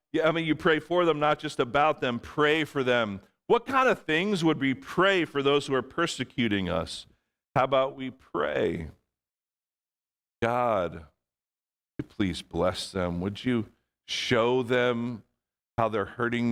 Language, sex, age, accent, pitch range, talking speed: English, male, 50-69, American, 105-130 Hz, 160 wpm